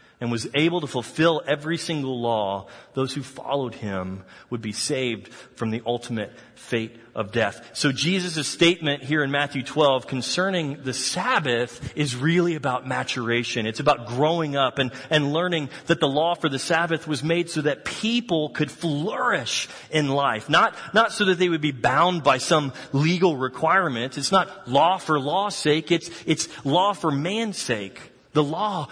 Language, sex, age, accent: English, male, 30-49, American